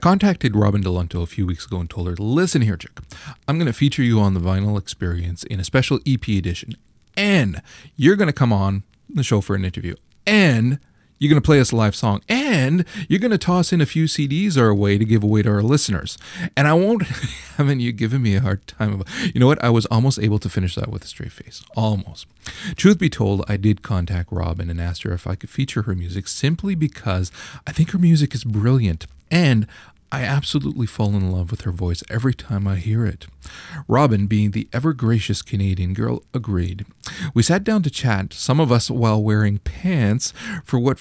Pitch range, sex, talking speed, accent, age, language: 100-140 Hz, male, 220 wpm, American, 30-49, English